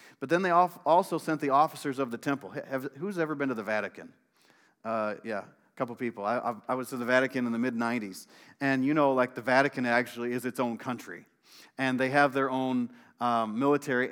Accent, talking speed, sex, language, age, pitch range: American, 205 wpm, male, English, 40-59, 125-155 Hz